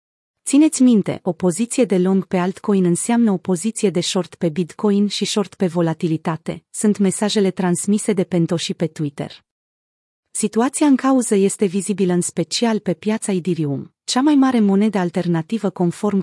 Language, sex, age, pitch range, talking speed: Romanian, female, 30-49, 175-220 Hz, 160 wpm